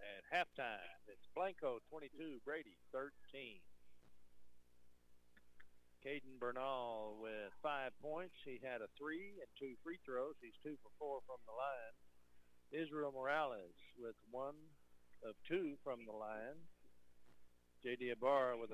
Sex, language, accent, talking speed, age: male, English, American, 125 wpm, 60-79